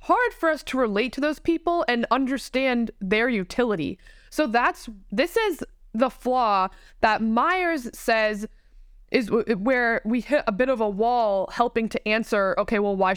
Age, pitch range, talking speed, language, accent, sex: 20-39, 190-245 Hz, 170 wpm, English, American, female